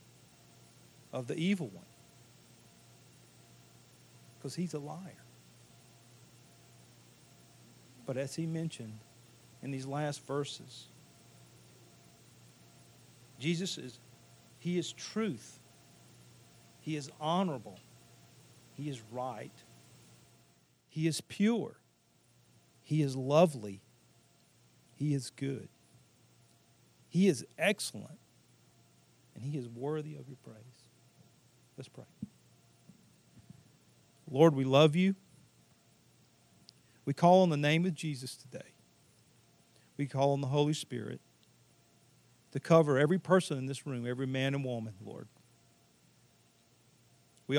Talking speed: 100 wpm